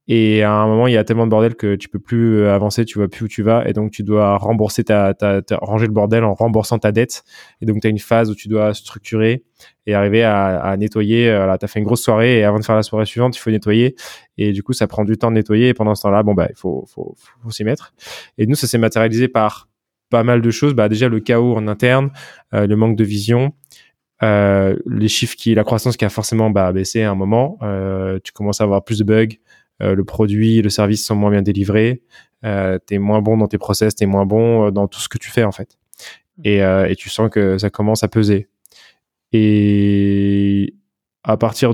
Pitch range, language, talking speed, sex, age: 105-115 Hz, French, 255 wpm, male, 20-39